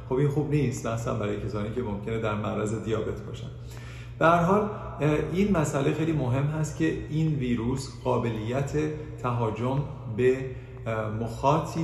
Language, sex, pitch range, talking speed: Persian, male, 110-135 Hz, 130 wpm